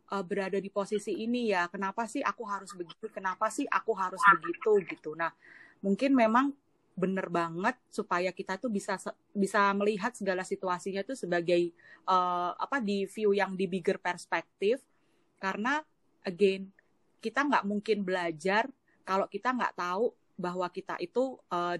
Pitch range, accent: 180-225 Hz, native